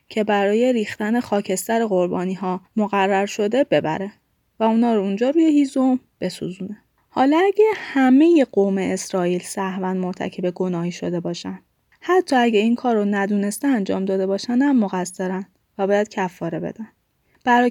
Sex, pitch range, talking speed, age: female, 190-255 Hz, 135 wpm, 20-39